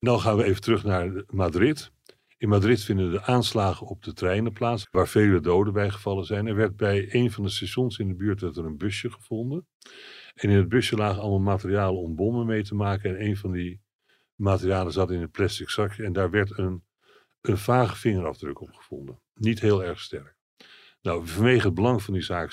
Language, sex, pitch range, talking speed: Dutch, male, 95-115 Hz, 210 wpm